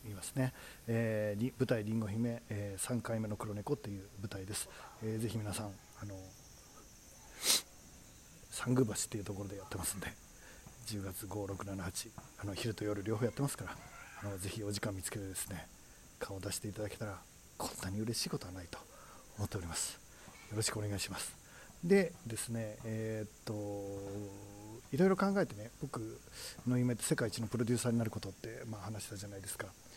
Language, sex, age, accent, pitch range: Japanese, male, 40-59, native, 100-125 Hz